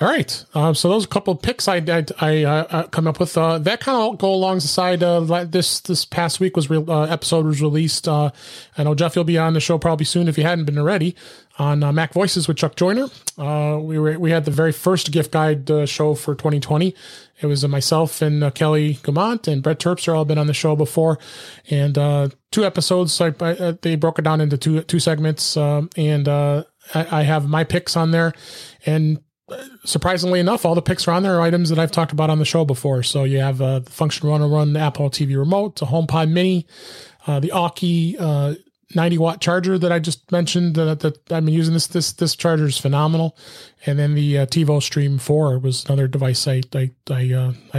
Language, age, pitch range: English, 30-49, 145-170 Hz